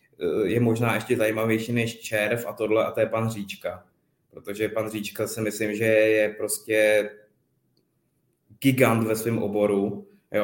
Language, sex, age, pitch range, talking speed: Czech, male, 20-39, 100-125 Hz, 150 wpm